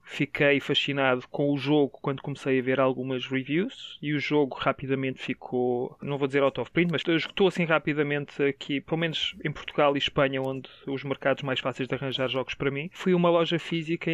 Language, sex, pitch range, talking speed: Portuguese, male, 135-160 Hz, 200 wpm